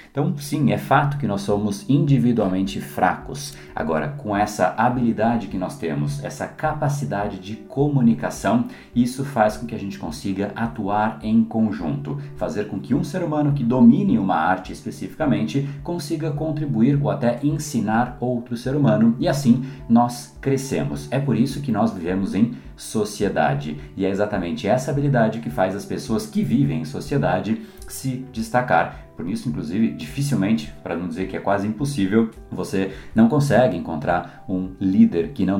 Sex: male